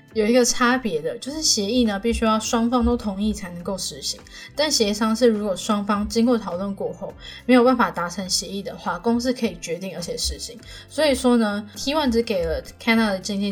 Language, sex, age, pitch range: Chinese, female, 10-29, 195-240 Hz